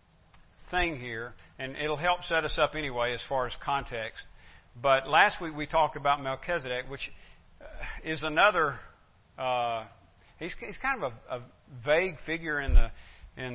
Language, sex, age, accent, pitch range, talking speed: English, male, 50-69, American, 120-155 Hz, 150 wpm